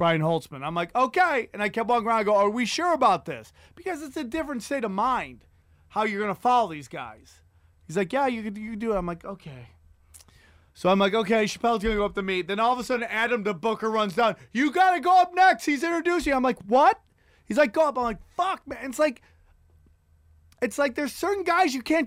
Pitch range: 170-265 Hz